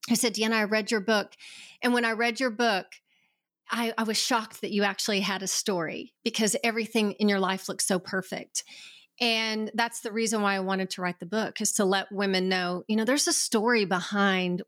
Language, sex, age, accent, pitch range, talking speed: English, female, 30-49, American, 195-240 Hz, 215 wpm